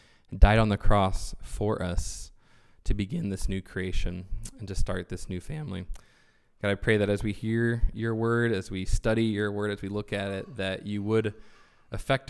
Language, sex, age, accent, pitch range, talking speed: English, male, 20-39, American, 100-130 Hz, 195 wpm